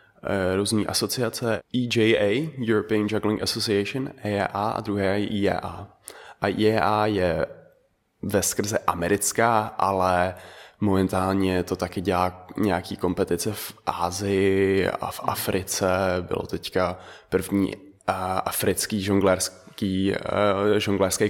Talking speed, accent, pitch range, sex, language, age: 105 wpm, native, 95-110 Hz, male, Czech, 20-39